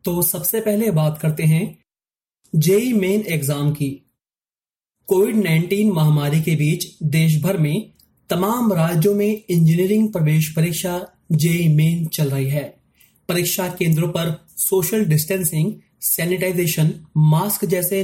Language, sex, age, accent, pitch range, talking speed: Hindi, male, 30-49, native, 155-200 Hz, 100 wpm